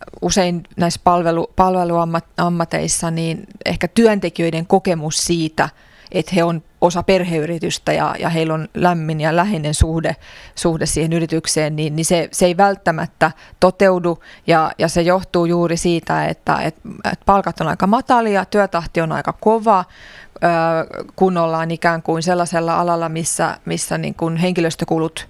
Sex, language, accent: female, Finnish, native